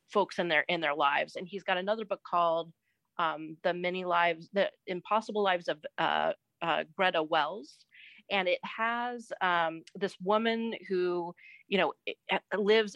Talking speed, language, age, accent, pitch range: 155 wpm, English, 30-49, American, 170-200 Hz